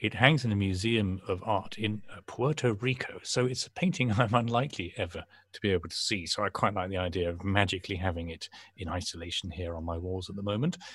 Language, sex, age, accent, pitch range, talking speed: English, male, 40-59, British, 90-110 Hz, 225 wpm